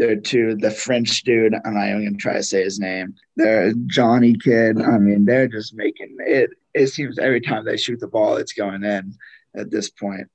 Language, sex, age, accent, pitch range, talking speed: English, male, 20-39, American, 110-130 Hz, 215 wpm